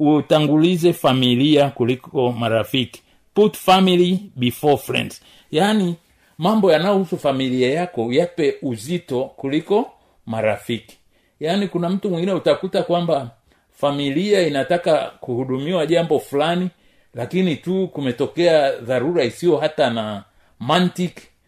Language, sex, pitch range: Swahili, male, 115-175 Hz